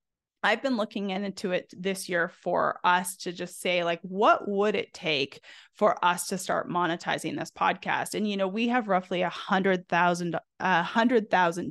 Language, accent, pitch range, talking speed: English, American, 175-215 Hz, 190 wpm